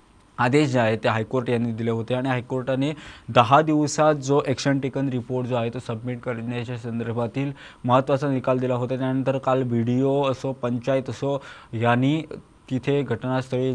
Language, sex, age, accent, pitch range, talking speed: English, male, 20-39, Indian, 120-135 Hz, 165 wpm